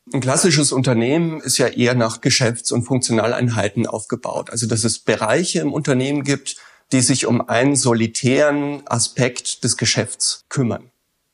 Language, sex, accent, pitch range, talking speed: German, male, German, 120-155 Hz, 145 wpm